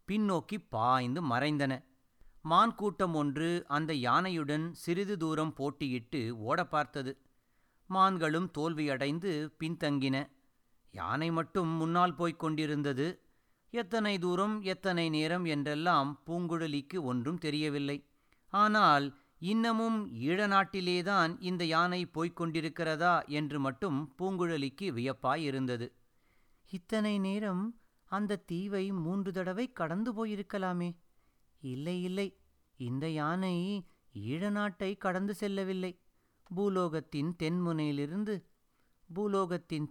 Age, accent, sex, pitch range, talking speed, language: 30-49, native, male, 145-190 Hz, 90 wpm, Tamil